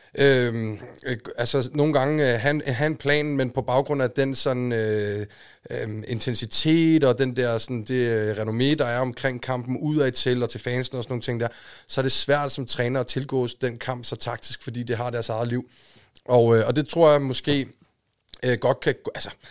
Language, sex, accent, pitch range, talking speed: Danish, male, native, 120-140 Hz, 205 wpm